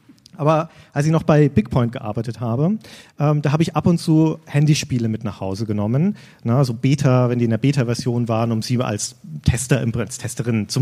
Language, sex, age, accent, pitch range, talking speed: German, male, 40-59, German, 120-160 Hz, 210 wpm